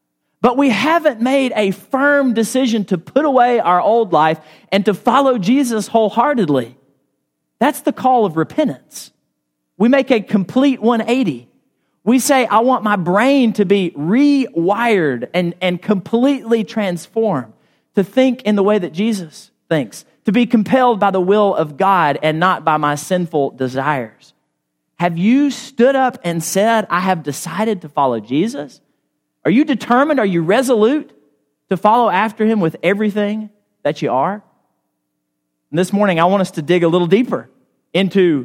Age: 40-59